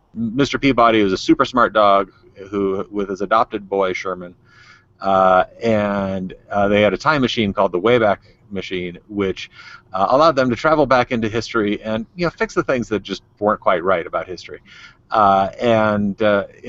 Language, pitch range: English, 100-120 Hz